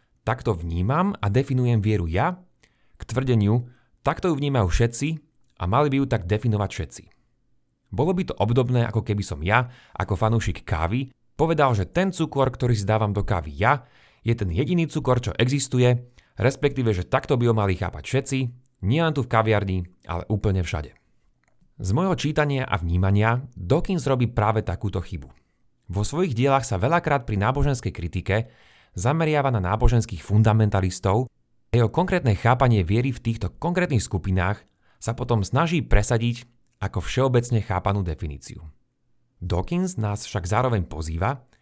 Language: Slovak